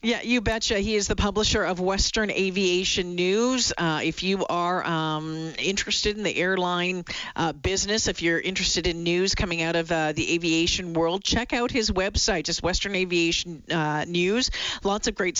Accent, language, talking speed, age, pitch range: American, English, 180 wpm, 50-69, 165-200 Hz